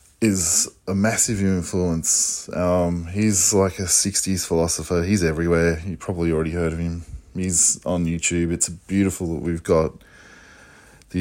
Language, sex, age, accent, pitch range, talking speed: English, male, 20-39, Australian, 85-100 Hz, 145 wpm